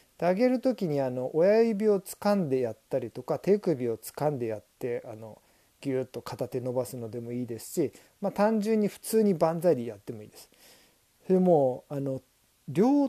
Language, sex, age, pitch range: Japanese, male, 40-59, 135-210 Hz